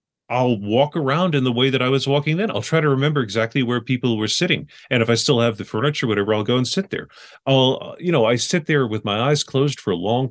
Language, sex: English, male